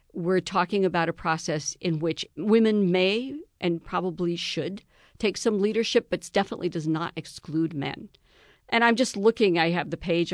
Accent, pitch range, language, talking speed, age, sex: American, 160-200 Hz, English, 170 wpm, 50-69, female